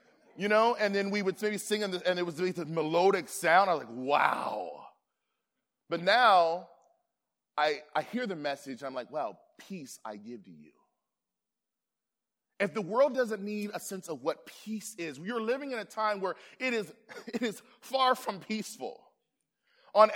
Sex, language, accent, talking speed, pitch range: male, English, American, 180 wpm, 200-255 Hz